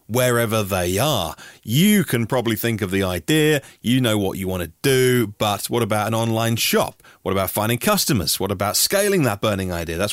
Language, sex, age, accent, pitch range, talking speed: English, male, 30-49, British, 95-145 Hz, 200 wpm